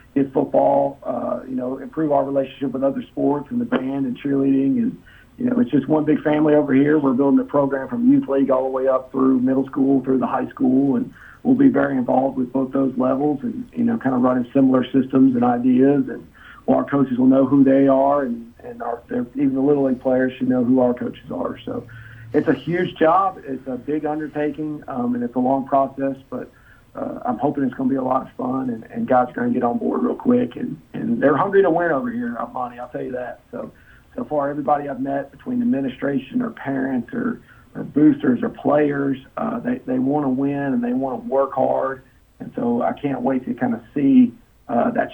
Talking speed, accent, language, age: 235 wpm, American, English, 40-59